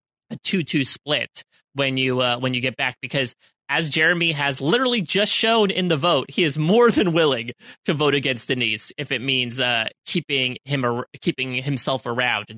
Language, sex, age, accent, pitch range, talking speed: English, male, 30-49, American, 125-155 Hz, 185 wpm